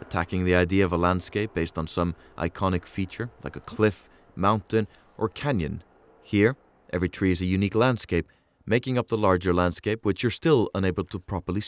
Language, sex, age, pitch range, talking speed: English, male, 30-49, 85-105 Hz, 180 wpm